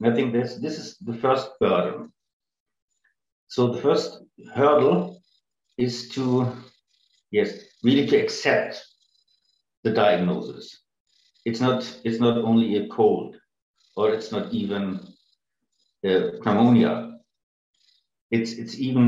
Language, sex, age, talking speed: English, male, 50-69, 110 wpm